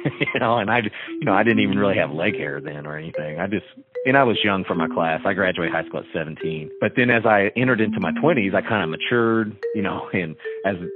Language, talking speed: English, 255 wpm